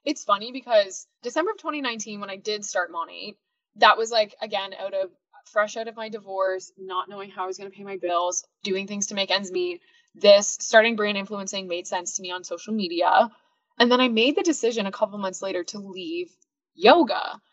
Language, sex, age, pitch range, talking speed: English, female, 20-39, 190-245 Hz, 210 wpm